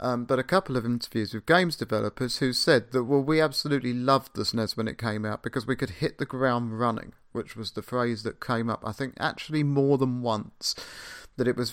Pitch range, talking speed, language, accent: 115-150 Hz, 230 wpm, English, British